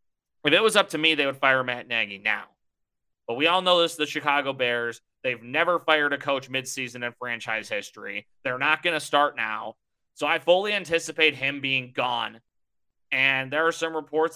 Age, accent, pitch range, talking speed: 30-49, American, 125-160 Hz, 195 wpm